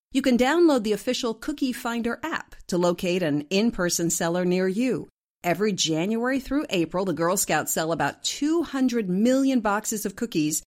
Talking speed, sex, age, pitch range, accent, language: 165 wpm, female, 40-59, 165-245 Hz, American, English